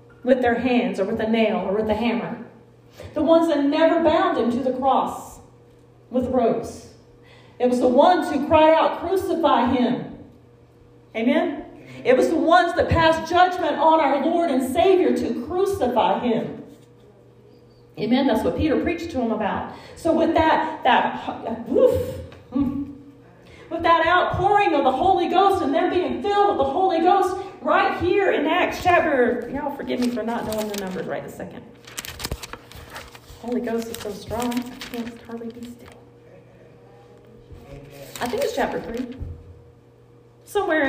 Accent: American